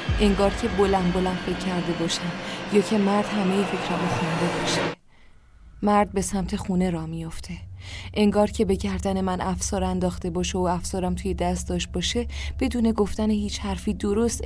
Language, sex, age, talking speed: Persian, female, 20-39, 165 wpm